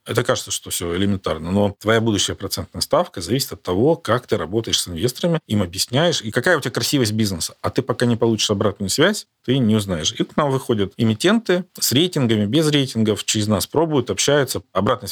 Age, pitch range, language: 40-59, 100-125 Hz, Russian